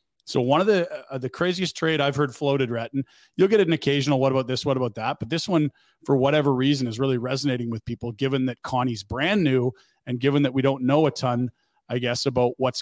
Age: 40-59